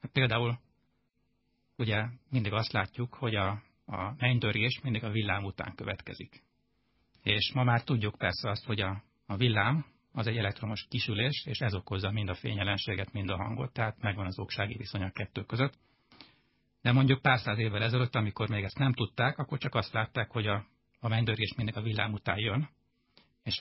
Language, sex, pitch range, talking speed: Hungarian, male, 100-120 Hz, 180 wpm